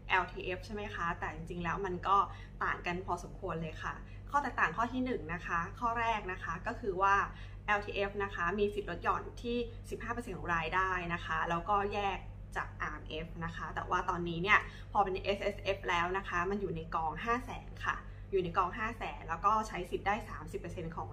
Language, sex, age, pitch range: Thai, female, 20-39, 170-225 Hz